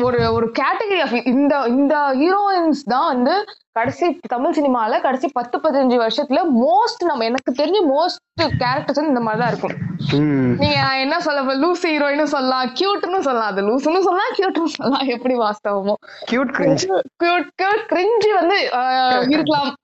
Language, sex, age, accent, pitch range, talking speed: Tamil, female, 20-39, native, 225-295 Hz, 70 wpm